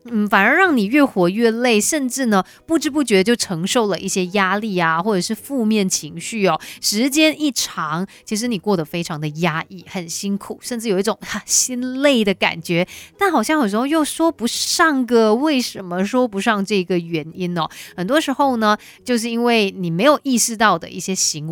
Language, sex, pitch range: Chinese, female, 175-230 Hz